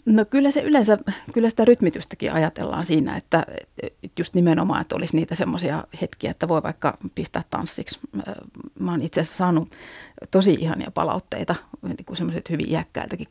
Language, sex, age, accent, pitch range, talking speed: Finnish, female, 40-59, native, 155-190 Hz, 155 wpm